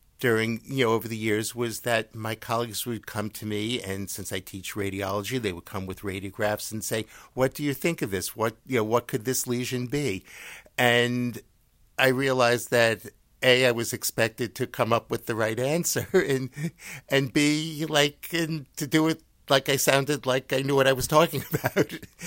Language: English